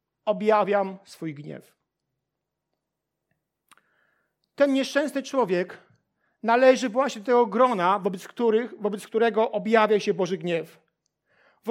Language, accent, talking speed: Polish, native, 100 wpm